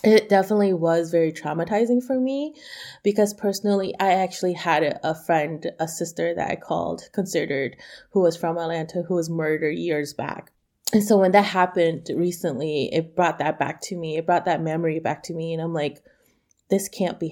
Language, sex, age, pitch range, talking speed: English, female, 20-39, 160-190 Hz, 185 wpm